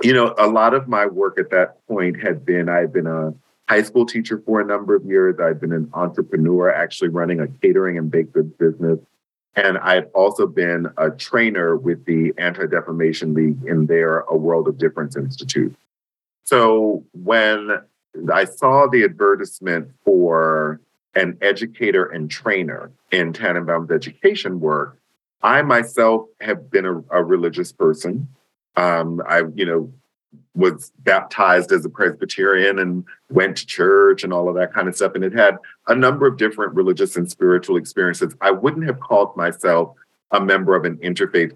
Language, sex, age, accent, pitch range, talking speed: English, male, 40-59, American, 85-115 Hz, 170 wpm